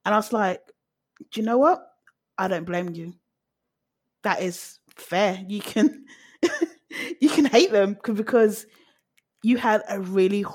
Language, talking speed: English, 155 wpm